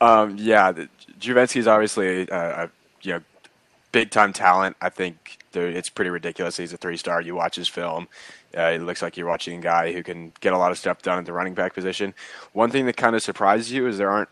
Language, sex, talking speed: English, male, 225 wpm